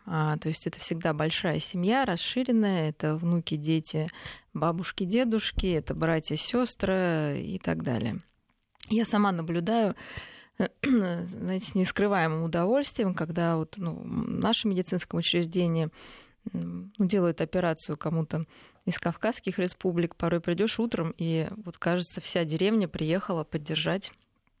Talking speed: 115 wpm